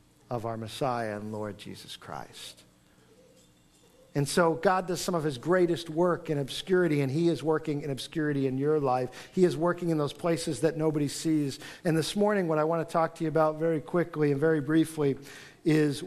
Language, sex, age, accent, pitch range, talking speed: English, male, 50-69, American, 135-165 Hz, 200 wpm